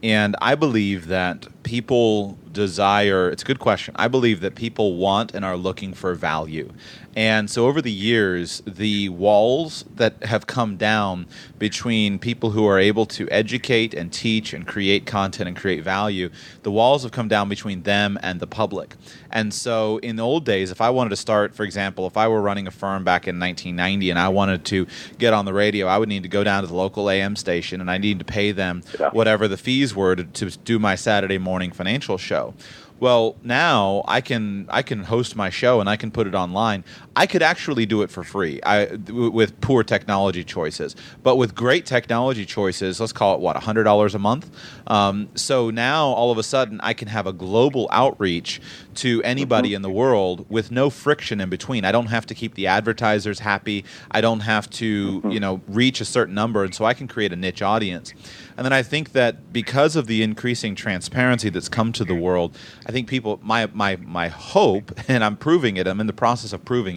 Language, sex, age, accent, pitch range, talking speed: English, male, 30-49, American, 95-115 Hz, 210 wpm